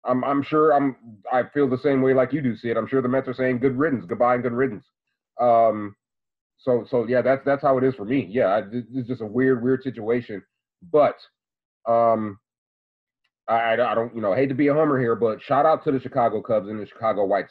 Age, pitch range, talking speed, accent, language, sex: 30-49, 115-130 Hz, 235 wpm, American, English, male